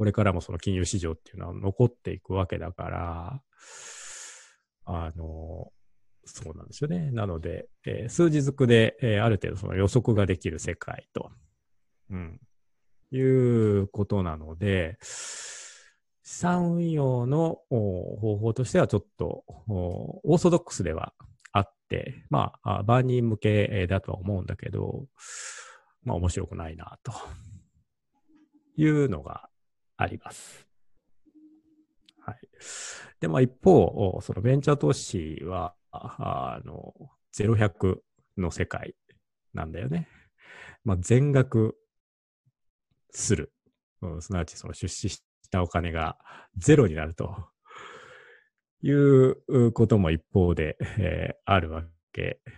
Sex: male